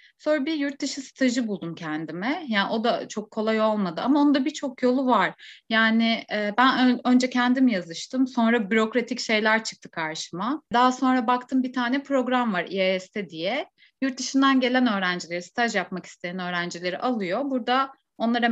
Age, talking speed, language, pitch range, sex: 30-49, 150 wpm, Turkish, 200-270 Hz, female